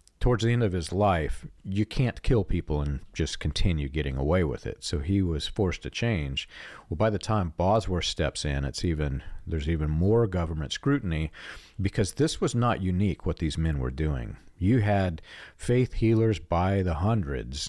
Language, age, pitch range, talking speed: English, 50-69, 80-110 Hz, 185 wpm